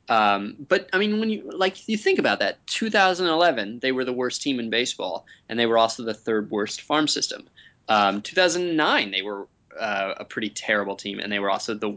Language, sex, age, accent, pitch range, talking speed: English, male, 20-39, American, 105-135 Hz, 210 wpm